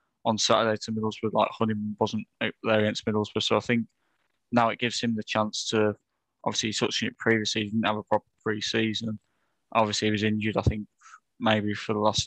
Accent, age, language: British, 20-39, English